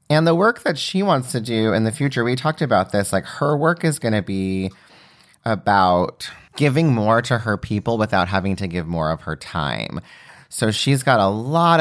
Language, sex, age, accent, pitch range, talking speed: English, male, 30-49, American, 95-130 Hz, 210 wpm